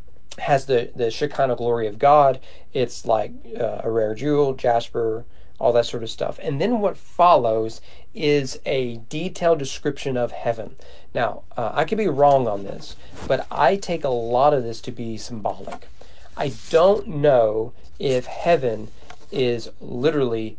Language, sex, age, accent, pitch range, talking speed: English, male, 40-59, American, 115-140 Hz, 155 wpm